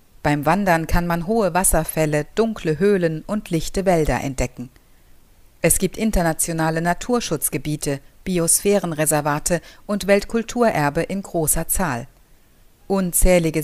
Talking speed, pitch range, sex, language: 100 wpm, 145-195 Hz, female, German